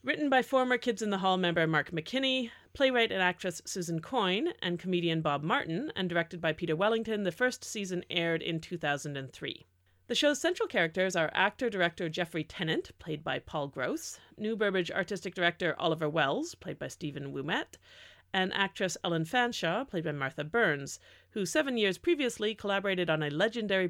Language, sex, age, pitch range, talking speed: English, female, 40-59, 160-215 Hz, 170 wpm